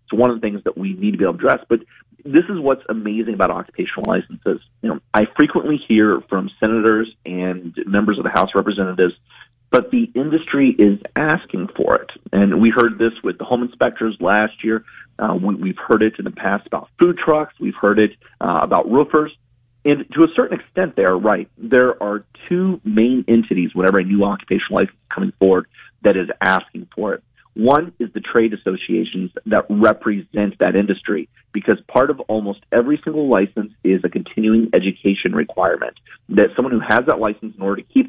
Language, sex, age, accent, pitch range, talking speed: English, male, 40-59, American, 100-125 Hz, 200 wpm